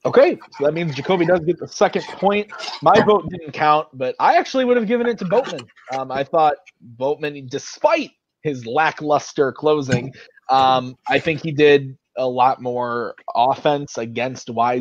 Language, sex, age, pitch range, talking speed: English, male, 20-39, 115-150 Hz, 170 wpm